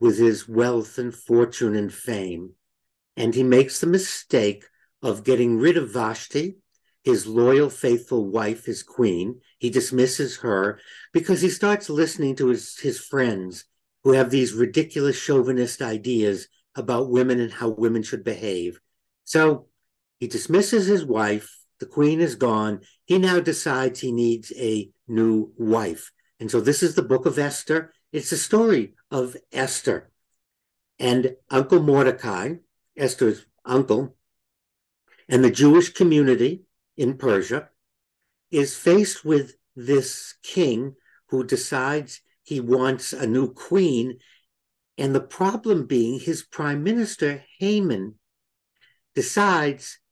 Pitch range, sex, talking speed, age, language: 120-160 Hz, male, 130 wpm, 60-79, English